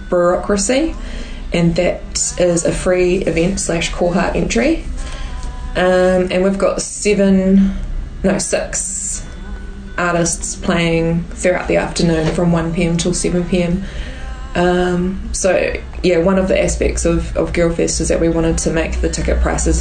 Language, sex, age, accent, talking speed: English, female, 20-39, Australian, 135 wpm